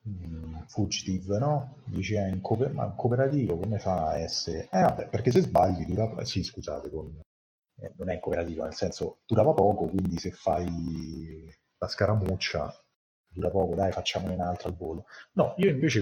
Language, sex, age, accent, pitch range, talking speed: Italian, male, 30-49, native, 90-110 Hz, 160 wpm